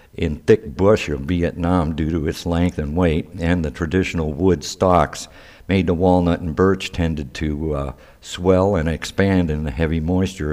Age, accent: 60-79, American